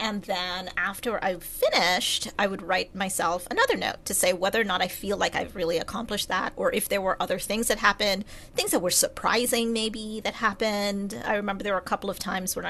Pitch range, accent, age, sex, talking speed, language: 185-220 Hz, American, 30-49, female, 220 wpm, English